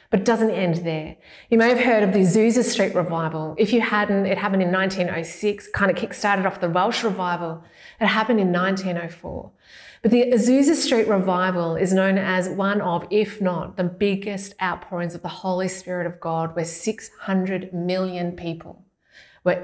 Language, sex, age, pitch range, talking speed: English, female, 30-49, 170-200 Hz, 175 wpm